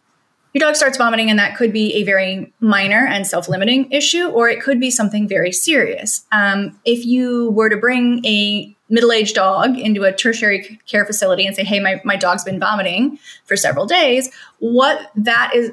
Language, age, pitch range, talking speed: English, 30-49, 205-250 Hz, 185 wpm